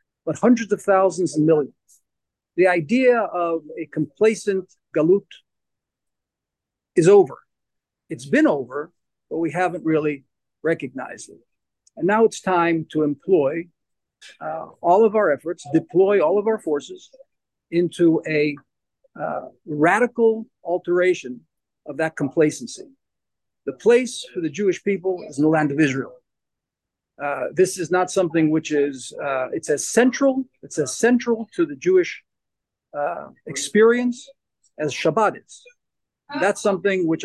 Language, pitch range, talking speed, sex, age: English, 150-225 Hz, 135 wpm, male, 50-69